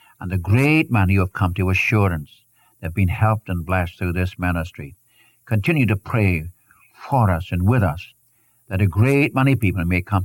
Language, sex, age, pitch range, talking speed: English, male, 60-79, 90-125 Hz, 195 wpm